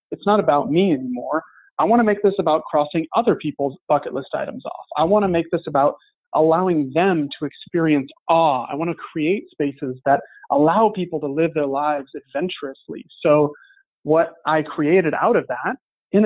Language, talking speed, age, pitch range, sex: English, 185 wpm, 30-49, 150-200 Hz, male